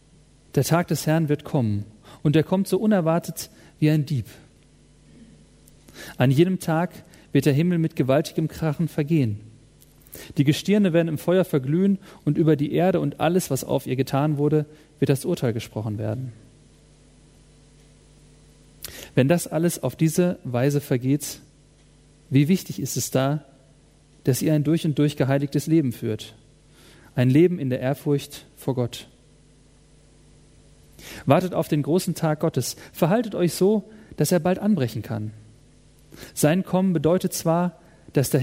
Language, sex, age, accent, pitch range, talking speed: German, male, 40-59, German, 135-165 Hz, 145 wpm